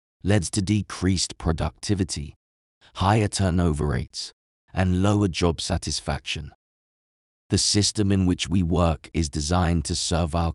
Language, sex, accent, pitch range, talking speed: English, male, British, 80-95 Hz, 125 wpm